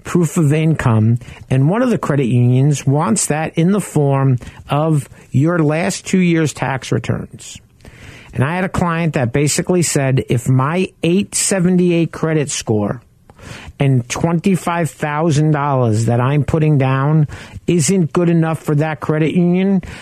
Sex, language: male, English